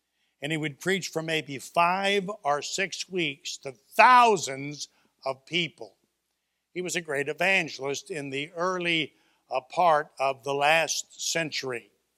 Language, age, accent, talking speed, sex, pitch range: English, 60-79, American, 140 wpm, male, 130-165 Hz